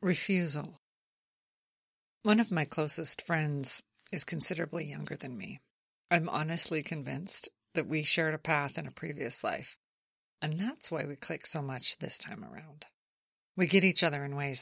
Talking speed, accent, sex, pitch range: 160 wpm, American, female, 140-175 Hz